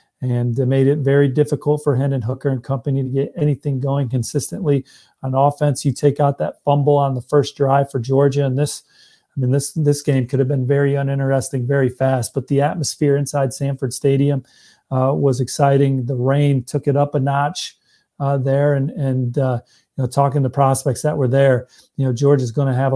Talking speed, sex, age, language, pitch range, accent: 205 wpm, male, 40-59, English, 135-145 Hz, American